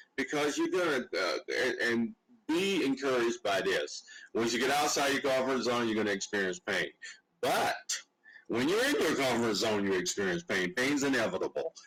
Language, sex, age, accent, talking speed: English, male, 50-69, American, 165 wpm